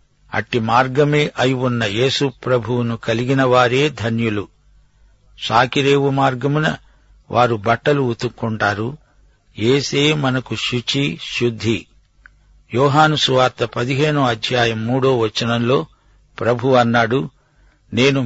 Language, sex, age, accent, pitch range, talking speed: Telugu, male, 60-79, native, 115-140 Hz, 80 wpm